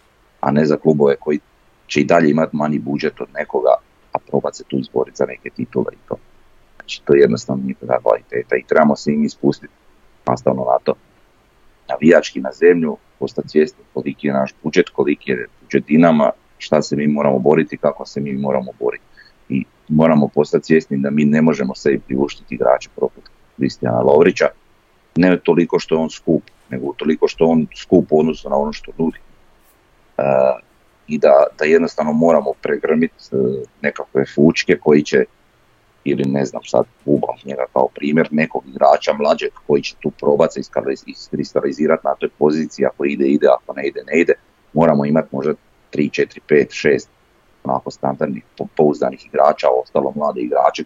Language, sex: Croatian, male